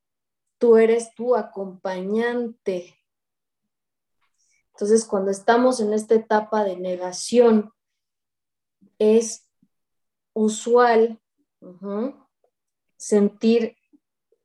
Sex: female